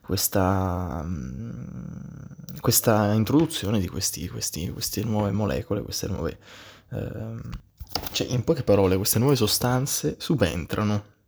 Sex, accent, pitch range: male, native, 100-125 Hz